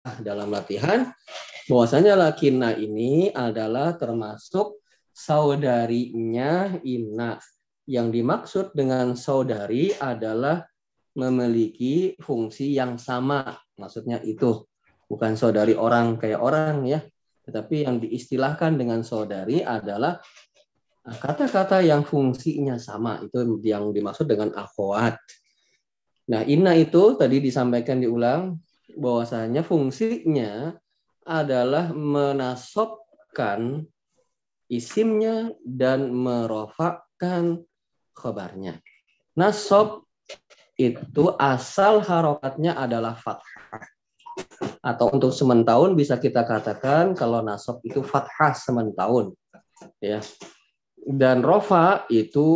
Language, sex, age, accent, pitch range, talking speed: Indonesian, male, 20-39, native, 115-155 Hz, 90 wpm